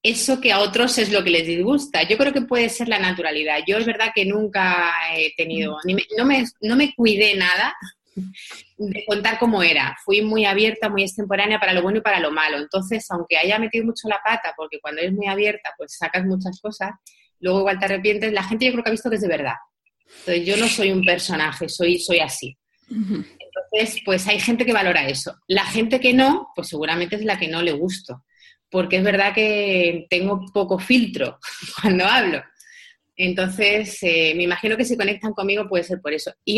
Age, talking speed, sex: 30-49, 205 wpm, female